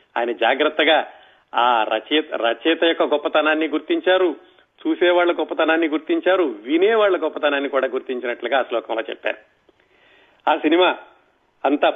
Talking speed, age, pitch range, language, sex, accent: 105 wpm, 40-59, 145-170 Hz, Telugu, male, native